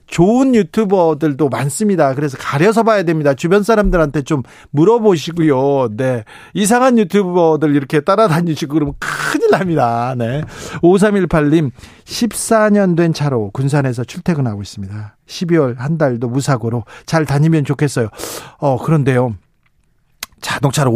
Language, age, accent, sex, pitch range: Korean, 40-59, native, male, 130-175 Hz